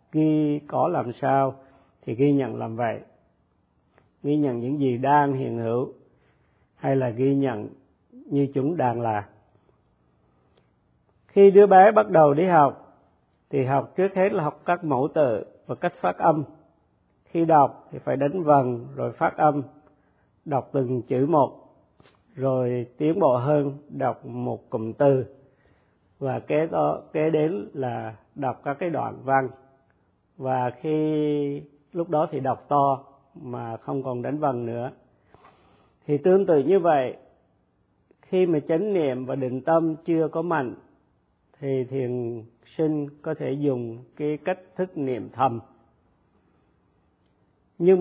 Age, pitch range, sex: 50-69, 125-155 Hz, male